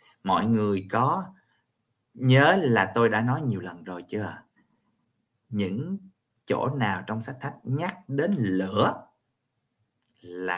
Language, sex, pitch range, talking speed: Vietnamese, male, 110-130 Hz, 125 wpm